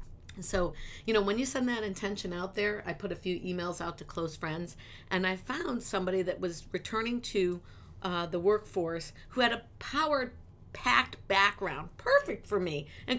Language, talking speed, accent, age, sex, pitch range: English, 185 wpm, American, 50-69, female, 180-240 Hz